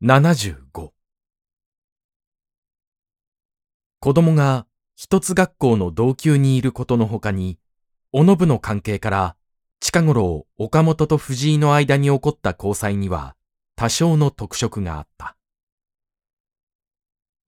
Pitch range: 95-150 Hz